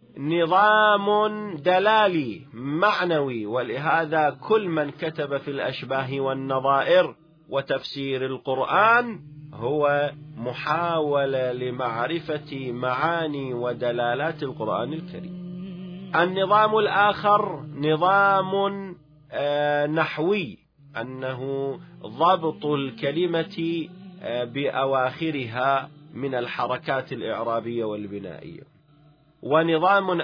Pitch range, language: 130-170 Hz, Arabic